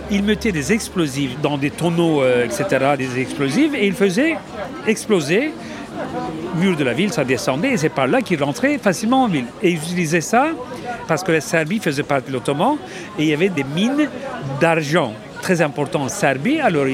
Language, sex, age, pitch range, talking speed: French, male, 50-69, 145-215 Hz, 195 wpm